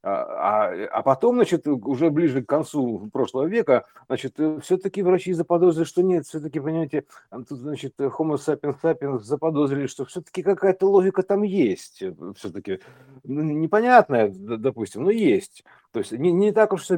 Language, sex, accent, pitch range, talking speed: Russian, male, native, 115-165 Hz, 145 wpm